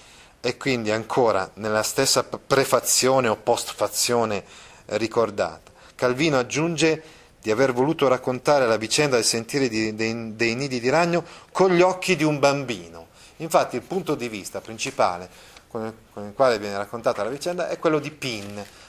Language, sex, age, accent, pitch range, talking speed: Italian, male, 30-49, native, 110-155 Hz, 145 wpm